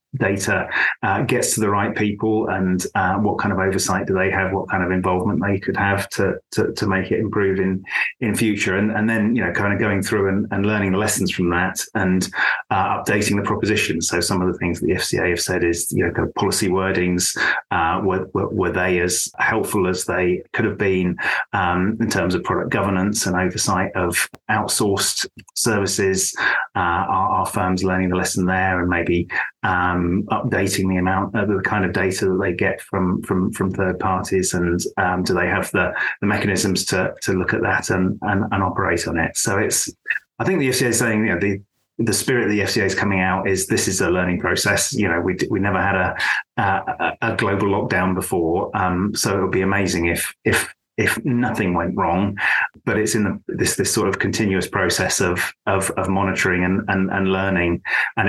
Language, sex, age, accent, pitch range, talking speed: English, male, 30-49, British, 90-100 Hz, 215 wpm